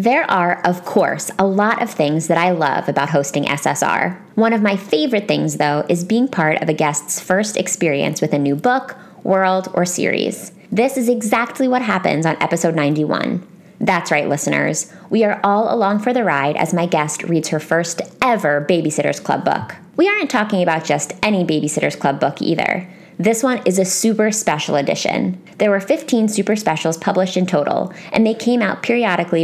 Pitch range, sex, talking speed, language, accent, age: 165-225 Hz, female, 190 wpm, English, American, 20-39